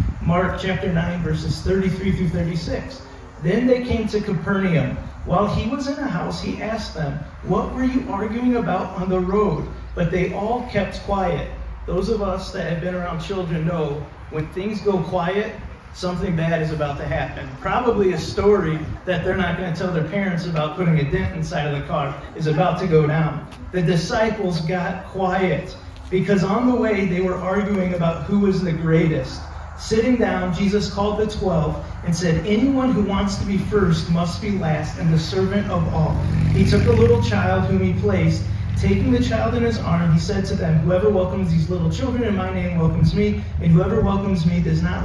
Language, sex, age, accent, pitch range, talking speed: English, male, 40-59, American, 150-195 Hz, 195 wpm